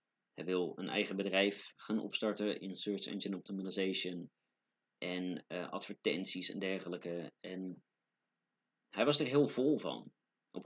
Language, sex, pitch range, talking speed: Dutch, male, 95-120 Hz, 135 wpm